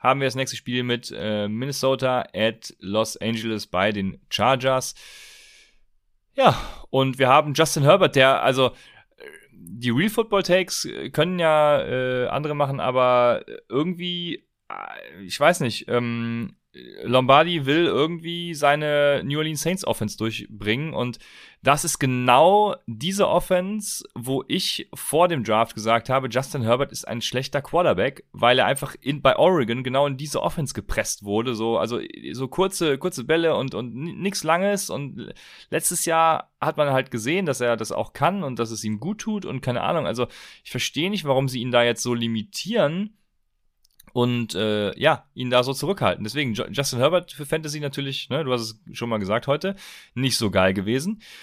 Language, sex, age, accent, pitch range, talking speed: German, male, 30-49, German, 115-160 Hz, 165 wpm